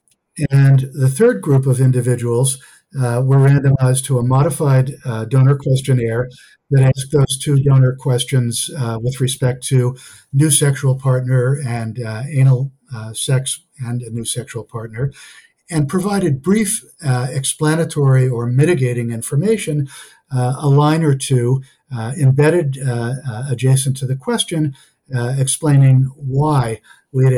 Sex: male